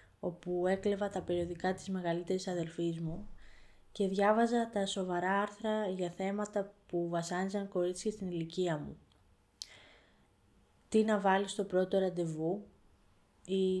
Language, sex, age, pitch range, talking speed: Greek, female, 20-39, 165-215 Hz, 120 wpm